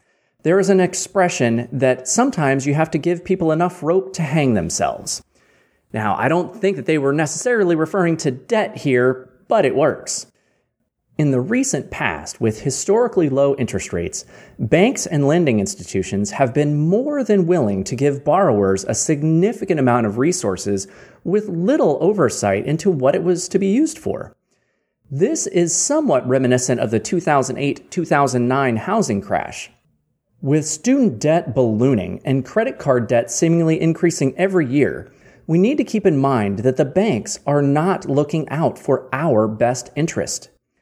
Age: 30-49